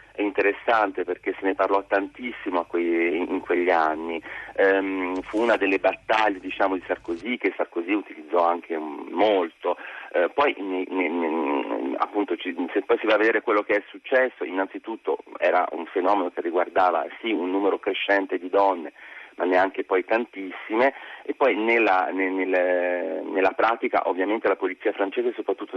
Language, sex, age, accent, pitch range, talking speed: Italian, male, 40-59, native, 95-115 Hz, 140 wpm